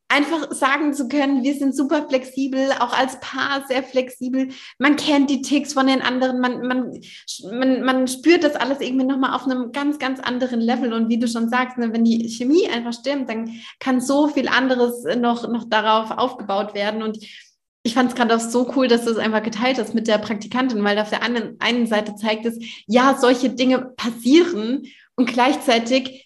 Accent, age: German, 20-39